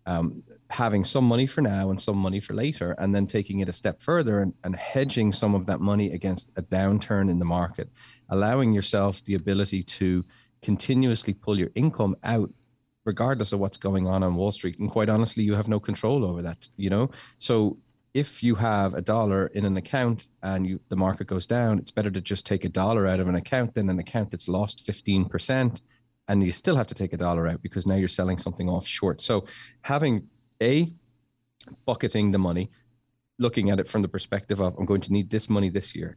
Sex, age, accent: male, 30-49, Irish